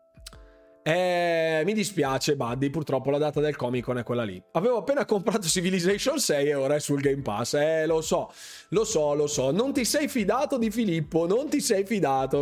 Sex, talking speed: male, 200 wpm